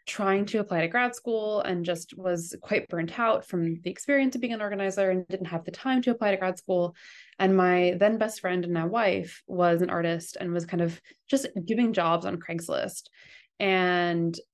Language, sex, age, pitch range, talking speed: English, female, 20-39, 175-215 Hz, 205 wpm